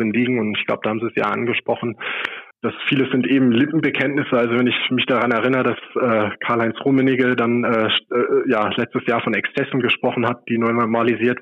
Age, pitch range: 20-39, 115-130 Hz